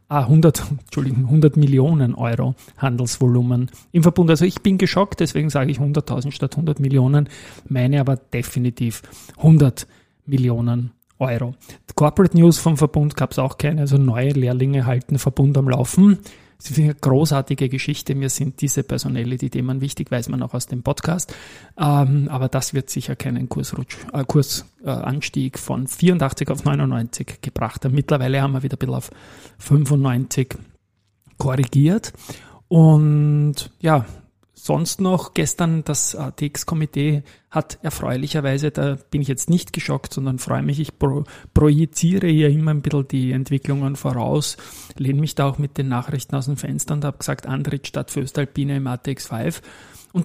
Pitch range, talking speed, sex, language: 130-150 Hz, 155 wpm, male, German